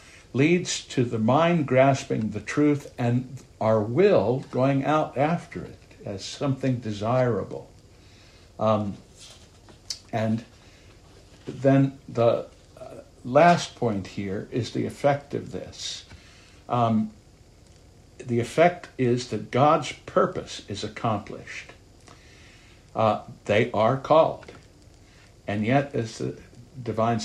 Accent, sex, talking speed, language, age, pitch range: American, male, 105 wpm, English, 60-79, 100-135 Hz